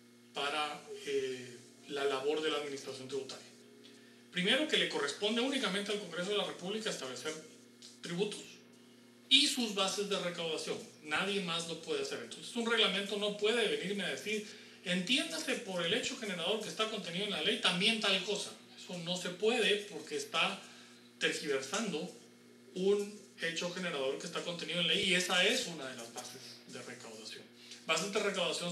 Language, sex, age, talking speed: Spanish, male, 40-59, 165 wpm